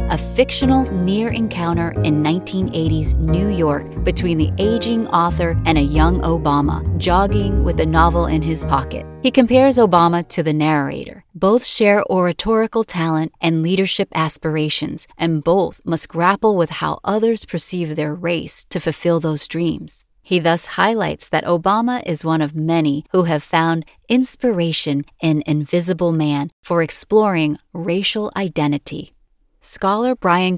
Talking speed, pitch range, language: 140 wpm, 155-195 Hz, English